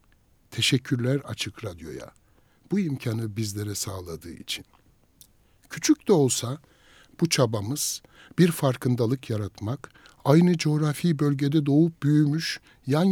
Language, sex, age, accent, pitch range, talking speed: Turkish, male, 60-79, native, 110-150 Hz, 100 wpm